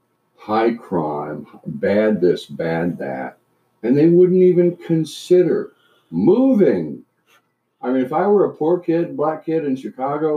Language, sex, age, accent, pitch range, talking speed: English, male, 50-69, American, 95-155 Hz, 140 wpm